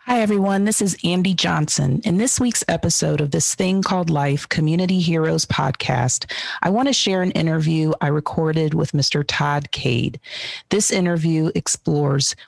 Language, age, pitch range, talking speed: English, 40-59, 145-185 Hz, 155 wpm